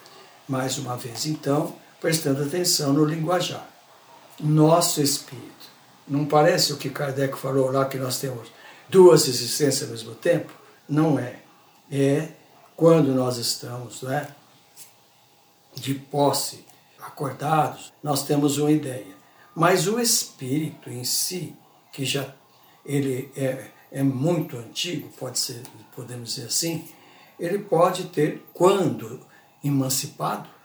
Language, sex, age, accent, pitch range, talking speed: Portuguese, male, 60-79, Brazilian, 135-160 Hz, 110 wpm